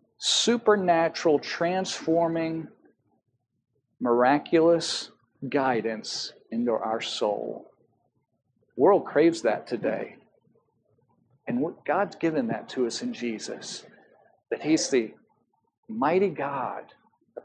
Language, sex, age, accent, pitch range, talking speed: English, male, 50-69, American, 130-180 Hz, 90 wpm